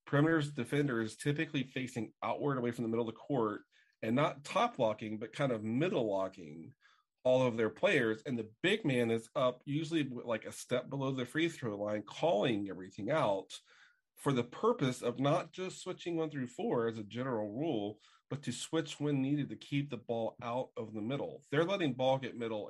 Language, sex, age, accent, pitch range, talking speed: English, male, 40-59, American, 110-140 Hz, 200 wpm